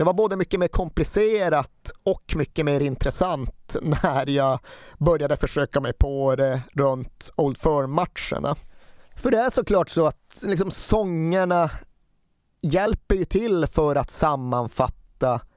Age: 30-49